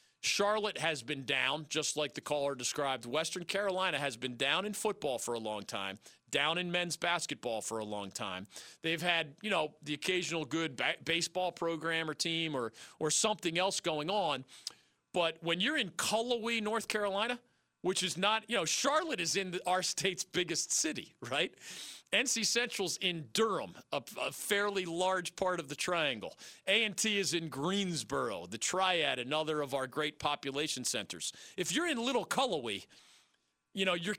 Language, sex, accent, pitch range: English, male, American, 150-205 Hz